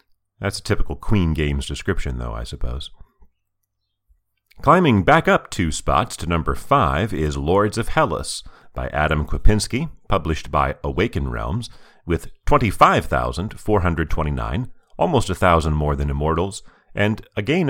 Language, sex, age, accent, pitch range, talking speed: English, male, 40-59, American, 70-100 Hz, 130 wpm